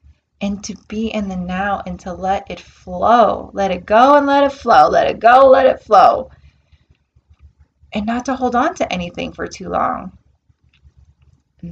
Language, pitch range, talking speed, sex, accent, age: English, 170-235 Hz, 180 wpm, female, American, 20-39